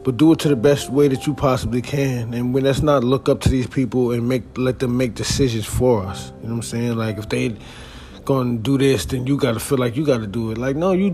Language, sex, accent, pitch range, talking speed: English, male, American, 110-135 Hz, 285 wpm